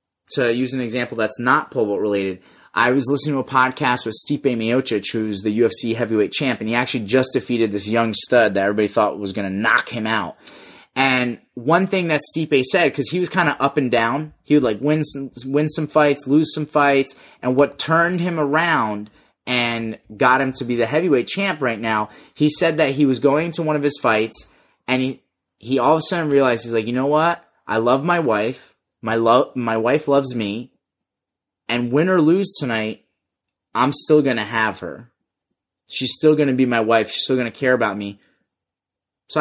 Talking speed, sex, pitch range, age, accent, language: 210 wpm, male, 115-150 Hz, 30-49, American, English